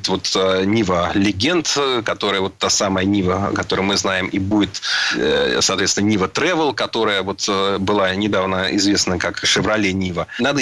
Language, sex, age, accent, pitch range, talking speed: Russian, male, 30-49, native, 95-110 Hz, 140 wpm